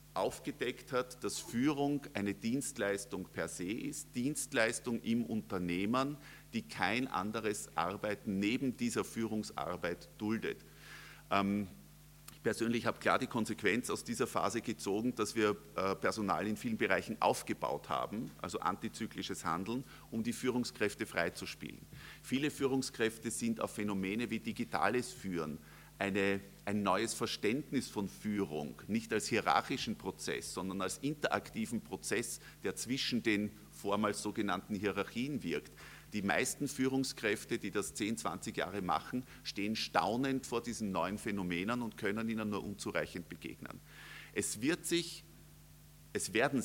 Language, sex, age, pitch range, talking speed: English, male, 50-69, 100-125 Hz, 130 wpm